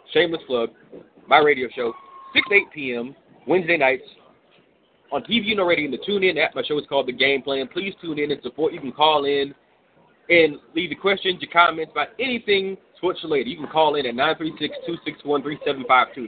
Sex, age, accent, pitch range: male, 30-49, American, 145-220 Hz